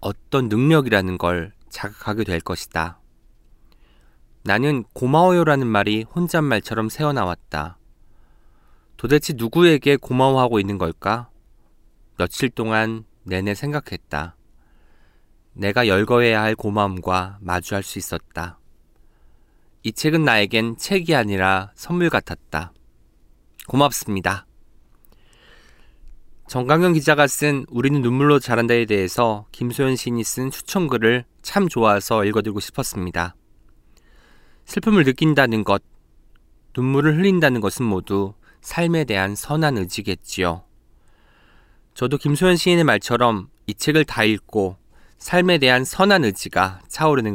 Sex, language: male, Korean